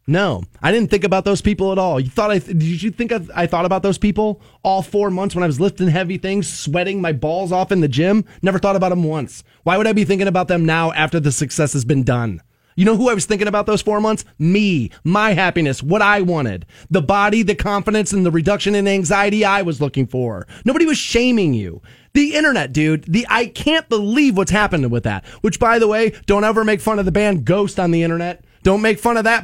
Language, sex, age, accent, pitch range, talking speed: English, male, 30-49, American, 150-205 Hz, 250 wpm